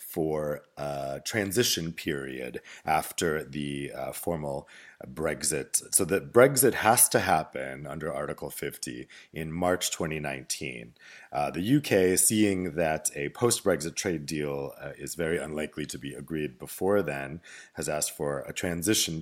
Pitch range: 75-95 Hz